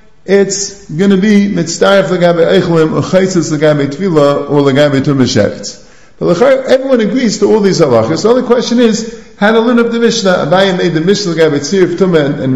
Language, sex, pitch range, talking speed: English, male, 135-200 Hz, 190 wpm